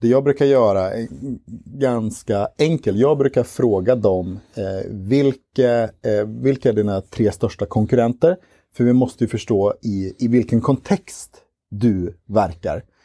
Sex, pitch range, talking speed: male, 100-130 Hz, 135 wpm